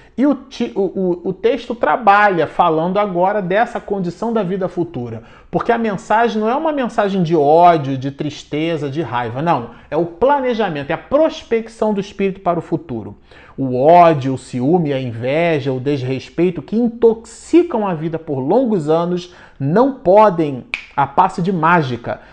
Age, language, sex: 40-59, Portuguese, male